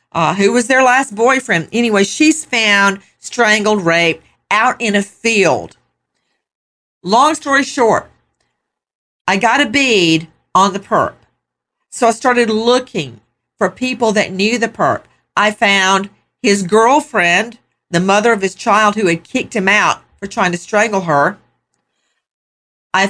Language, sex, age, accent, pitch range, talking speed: English, female, 50-69, American, 170-230 Hz, 145 wpm